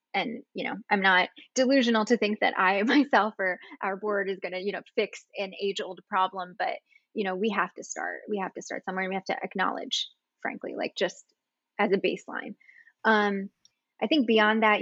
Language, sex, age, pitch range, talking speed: English, female, 10-29, 190-225 Hz, 205 wpm